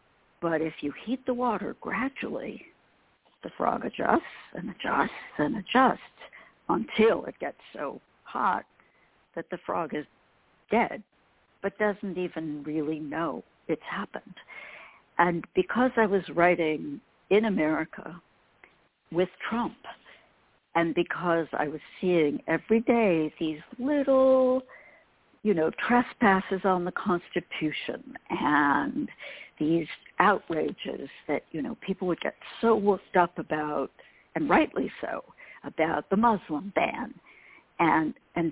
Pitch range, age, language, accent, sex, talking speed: 160-230 Hz, 60-79, English, American, female, 120 wpm